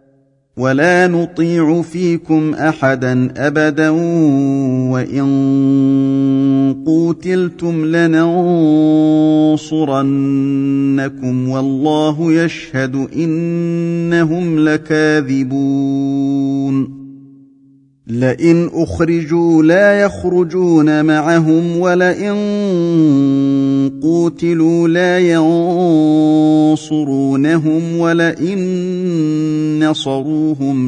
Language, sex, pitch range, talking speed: Arabic, male, 135-165 Hz, 45 wpm